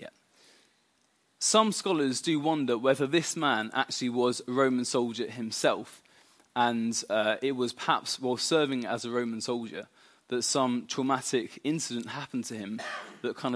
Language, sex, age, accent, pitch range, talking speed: English, male, 20-39, British, 120-155 Hz, 145 wpm